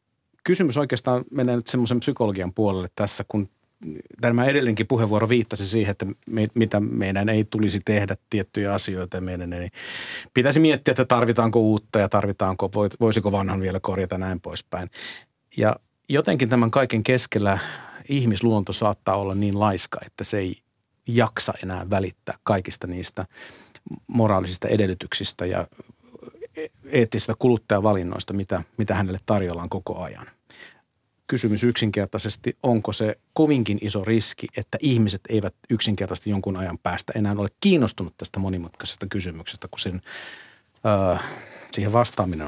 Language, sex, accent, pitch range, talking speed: Finnish, male, native, 95-115 Hz, 125 wpm